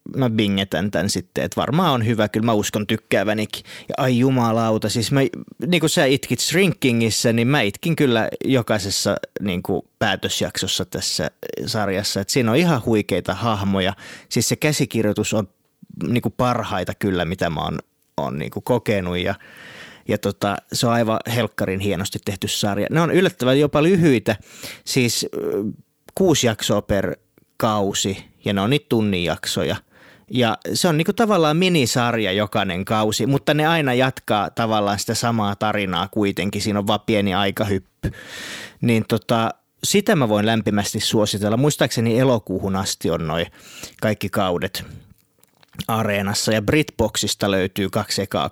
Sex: male